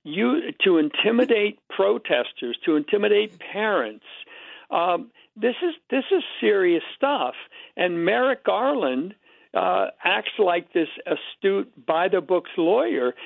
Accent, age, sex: American, 60-79, male